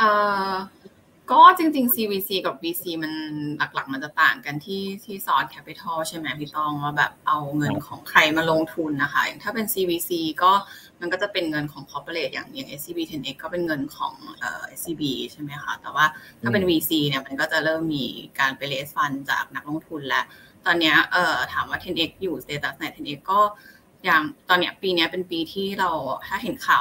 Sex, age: female, 20-39